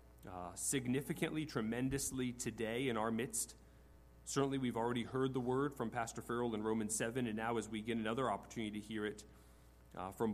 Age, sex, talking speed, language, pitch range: 40-59, male, 180 wpm, English, 105-135 Hz